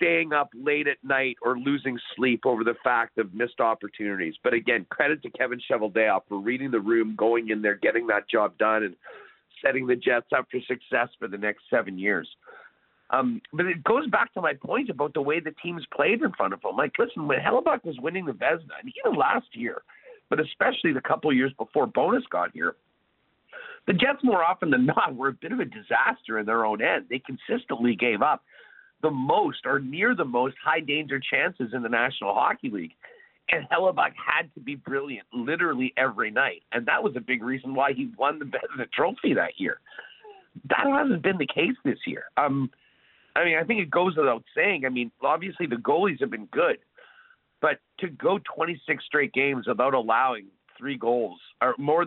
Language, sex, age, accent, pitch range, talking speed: English, male, 50-69, American, 120-190 Hz, 205 wpm